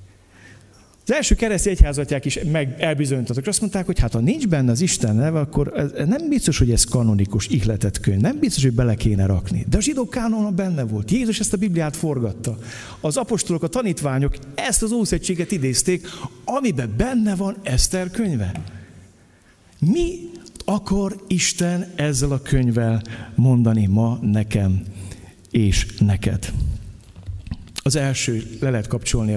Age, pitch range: 50-69, 105-145 Hz